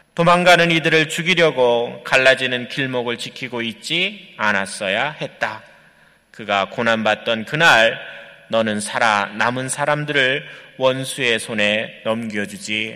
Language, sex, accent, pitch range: Korean, male, native, 115-155 Hz